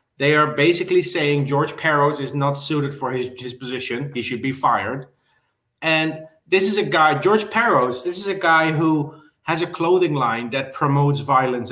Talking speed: 185 wpm